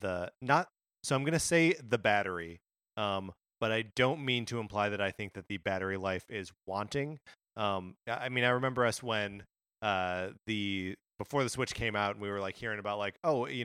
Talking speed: 205 wpm